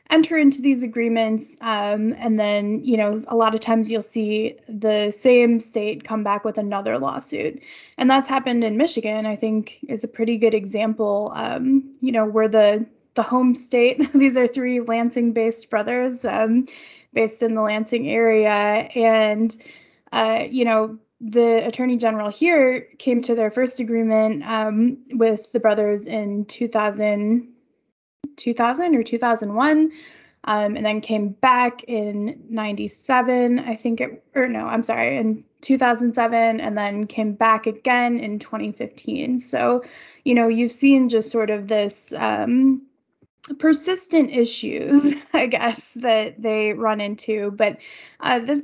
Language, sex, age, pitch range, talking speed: English, female, 10-29, 220-255 Hz, 150 wpm